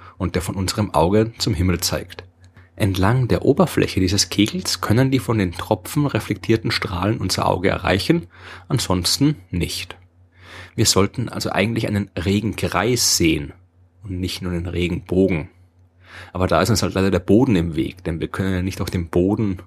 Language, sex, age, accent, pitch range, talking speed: German, male, 30-49, German, 90-105 Hz, 170 wpm